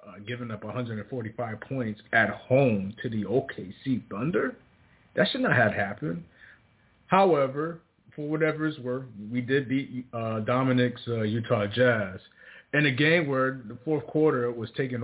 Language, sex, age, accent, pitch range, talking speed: English, male, 30-49, American, 110-145 Hz, 150 wpm